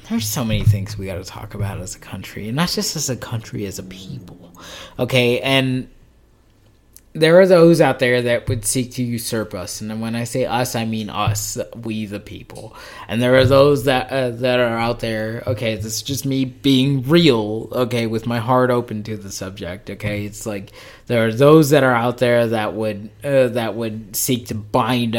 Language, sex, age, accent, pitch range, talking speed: English, male, 20-39, American, 105-130 Hz, 210 wpm